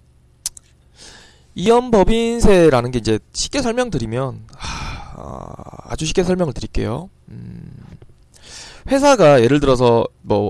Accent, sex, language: native, male, Korean